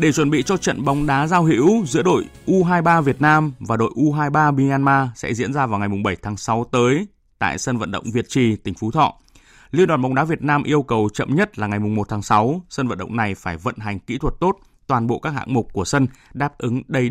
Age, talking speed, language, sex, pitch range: 20-39, 255 wpm, Vietnamese, male, 115-145 Hz